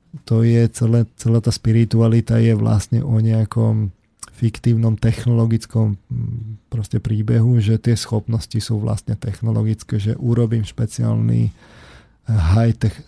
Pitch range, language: 110-125 Hz, Slovak